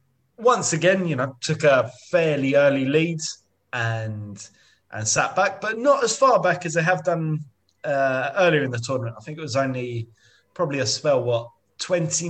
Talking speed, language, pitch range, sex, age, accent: 180 wpm, English, 110-150 Hz, male, 20-39, British